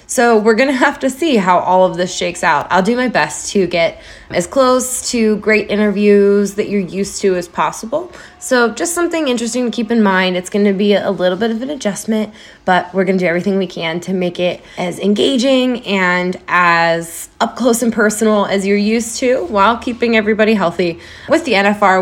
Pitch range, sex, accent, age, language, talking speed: 185-235 Hz, female, American, 20-39, English, 215 wpm